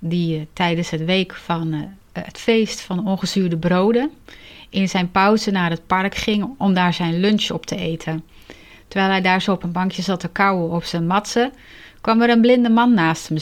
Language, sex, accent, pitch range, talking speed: Dutch, female, Dutch, 160-220 Hz, 195 wpm